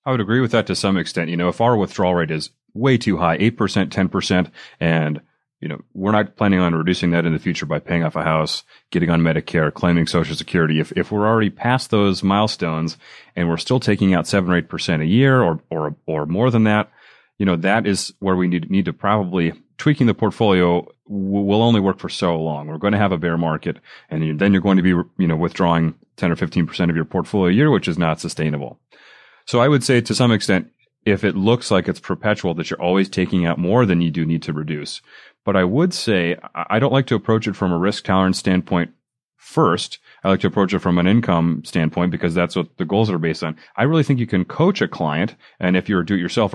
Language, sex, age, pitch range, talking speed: English, male, 30-49, 85-105 Hz, 235 wpm